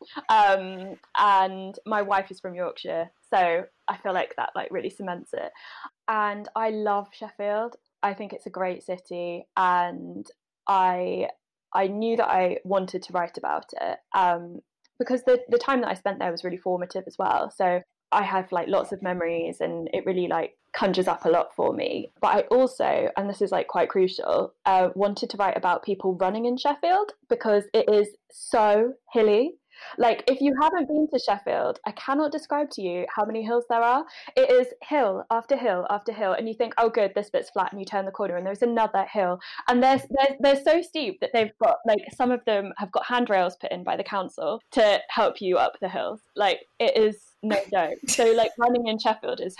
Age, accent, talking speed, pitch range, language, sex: 10-29, British, 205 wpm, 195-265 Hz, English, female